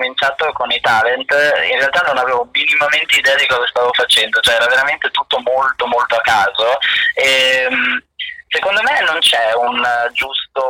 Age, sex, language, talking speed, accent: 20-39, male, Italian, 165 wpm, native